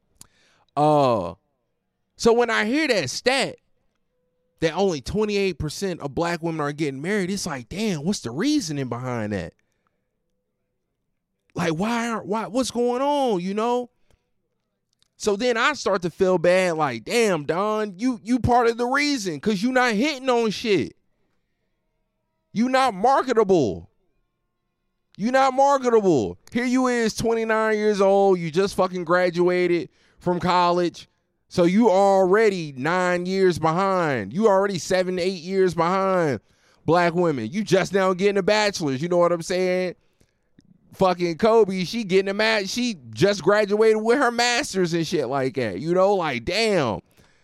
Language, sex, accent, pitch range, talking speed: English, male, American, 175-230 Hz, 150 wpm